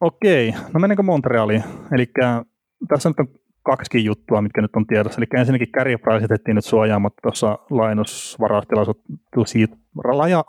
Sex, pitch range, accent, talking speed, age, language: male, 110-125 Hz, native, 120 wpm, 30-49, Finnish